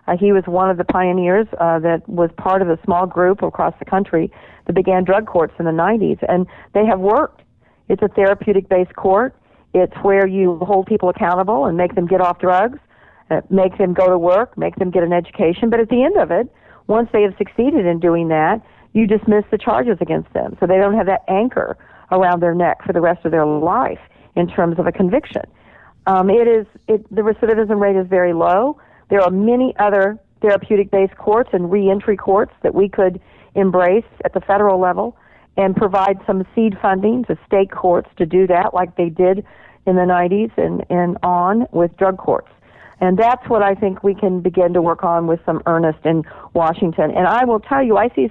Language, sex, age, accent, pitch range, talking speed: English, female, 50-69, American, 175-210 Hz, 205 wpm